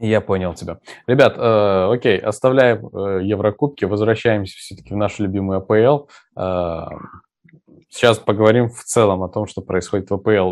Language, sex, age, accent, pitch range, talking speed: Russian, male, 20-39, native, 100-130 Hz, 150 wpm